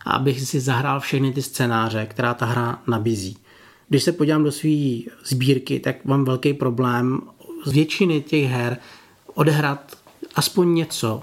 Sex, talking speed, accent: male, 145 wpm, native